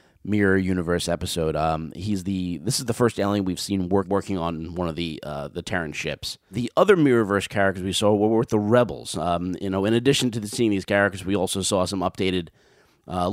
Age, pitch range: 30-49, 90-110 Hz